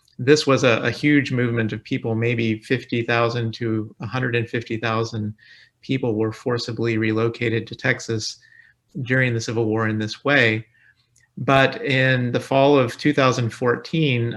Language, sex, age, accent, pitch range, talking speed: English, male, 40-59, American, 115-130 Hz, 130 wpm